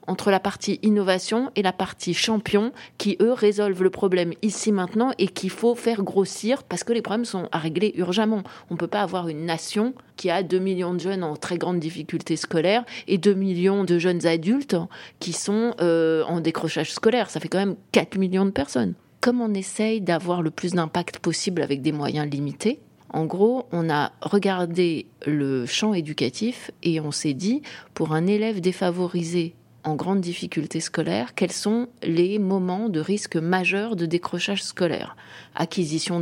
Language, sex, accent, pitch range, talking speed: French, female, French, 165-205 Hz, 180 wpm